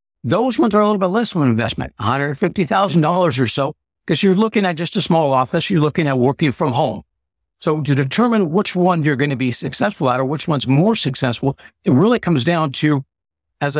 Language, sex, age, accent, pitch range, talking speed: English, male, 60-79, American, 125-170 Hz, 215 wpm